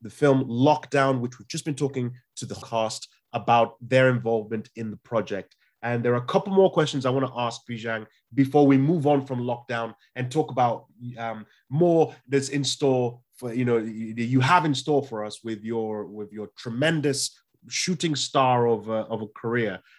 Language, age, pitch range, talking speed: English, 20-39, 115-140 Hz, 195 wpm